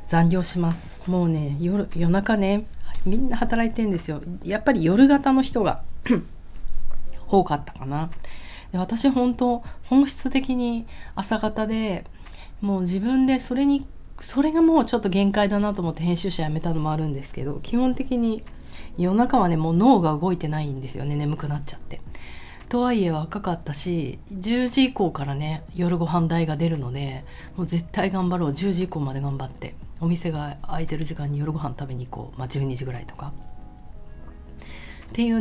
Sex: female